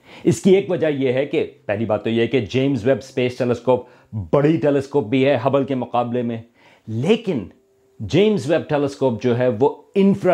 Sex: male